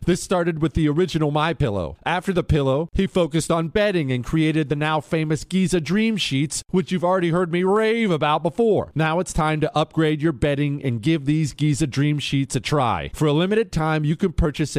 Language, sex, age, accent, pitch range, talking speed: English, male, 40-59, American, 150-190 Hz, 205 wpm